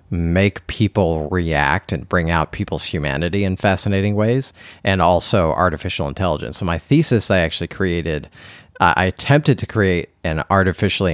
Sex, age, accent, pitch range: male, 30-49, American, 80-100 Hz